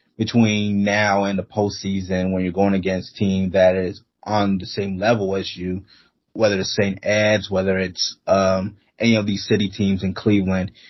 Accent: American